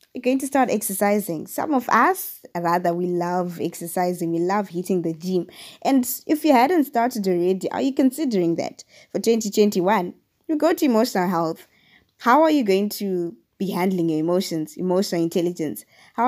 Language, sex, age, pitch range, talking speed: English, female, 20-39, 175-235 Hz, 170 wpm